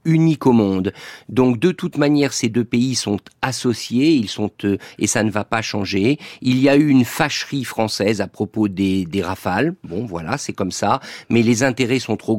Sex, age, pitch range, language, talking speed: male, 50-69, 105-140 Hz, French, 210 wpm